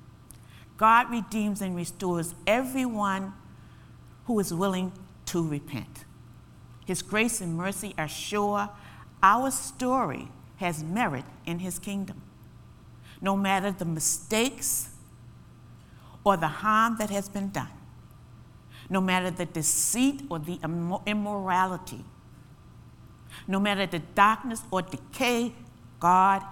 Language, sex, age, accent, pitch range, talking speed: English, female, 60-79, American, 130-205 Hz, 110 wpm